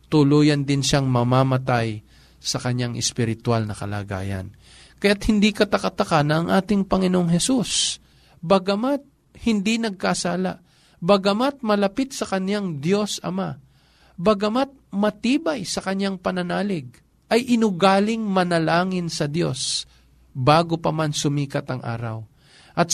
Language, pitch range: Filipino, 135-185 Hz